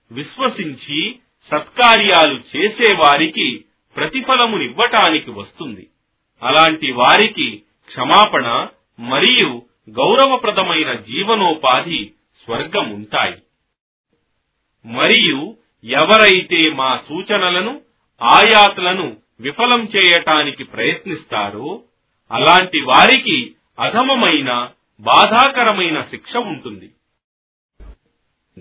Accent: native